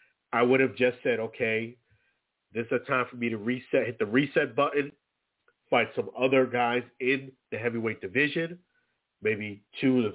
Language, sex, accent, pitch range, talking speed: English, male, American, 115-140 Hz, 170 wpm